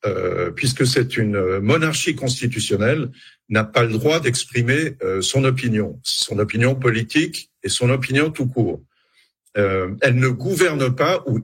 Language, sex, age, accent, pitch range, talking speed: French, male, 70-89, French, 115-145 Hz, 140 wpm